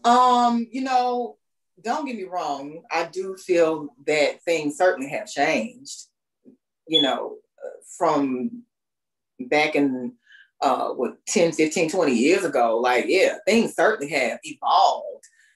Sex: female